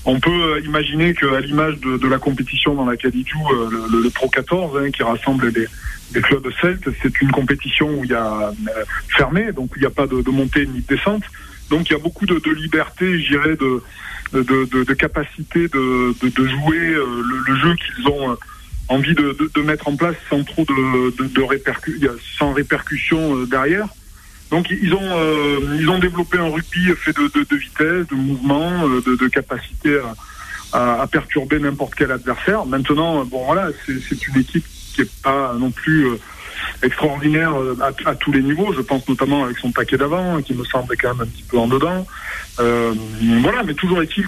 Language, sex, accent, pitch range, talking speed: French, male, French, 130-155 Hz, 200 wpm